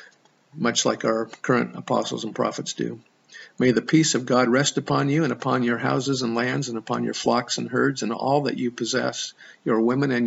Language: English